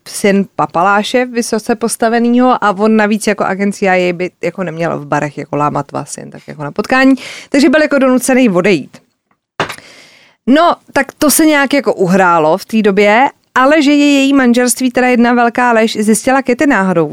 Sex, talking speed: female, 175 wpm